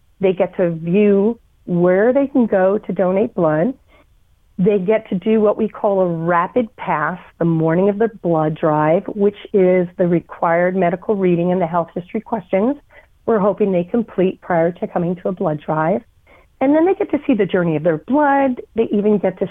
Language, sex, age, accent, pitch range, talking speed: English, female, 40-59, American, 165-215 Hz, 195 wpm